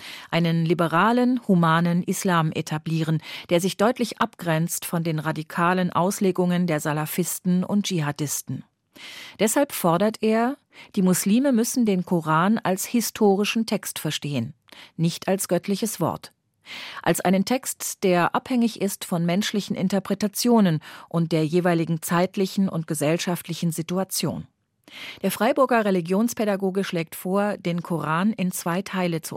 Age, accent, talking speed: 40-59, German, 125 wpm